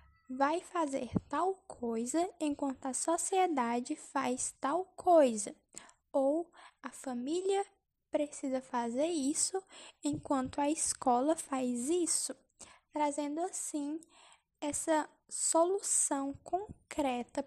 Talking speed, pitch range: 90 wpm, 280-335 Hz